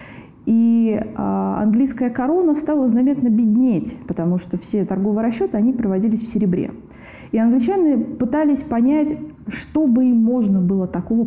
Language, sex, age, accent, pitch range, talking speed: Russian, female, 20-39, native, 195-240 Hz, 135 wpm